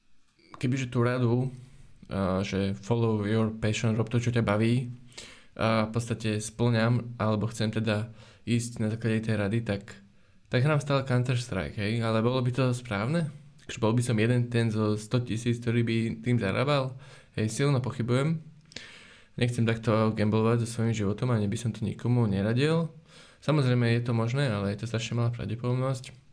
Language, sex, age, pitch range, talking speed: Slovak, male, 20-39, 110-130 Hz, 170 wpm